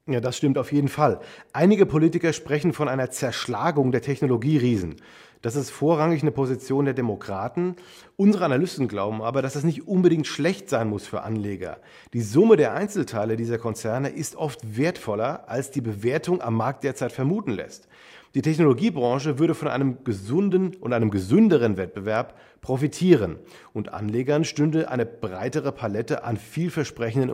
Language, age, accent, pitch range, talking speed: German, 40-59, German, 115-155 Hz, 155 wpm